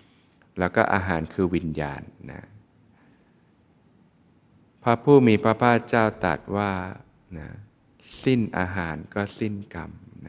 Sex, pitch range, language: male, 90-110 Hz, Thai